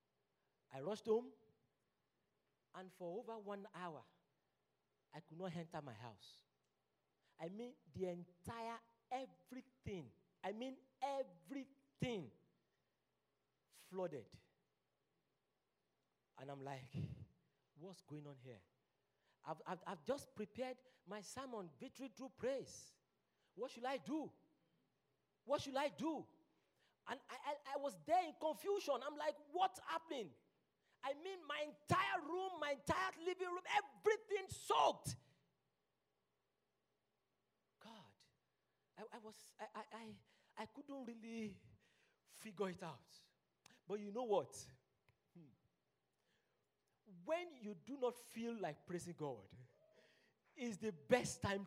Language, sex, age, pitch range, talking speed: English, male, 40-59, 170-275 Hz, 115 wpm